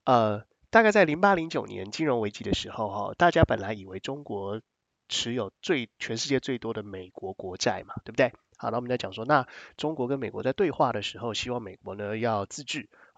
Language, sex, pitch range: Chinese, male, 105-150 Hz